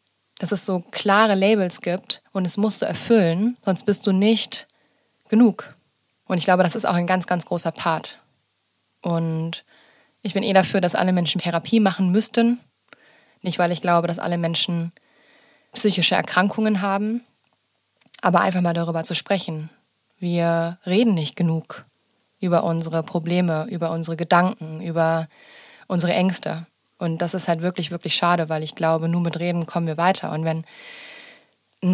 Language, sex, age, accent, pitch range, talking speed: German, female, 20-39, German, 170-195 Hz, 160 wpm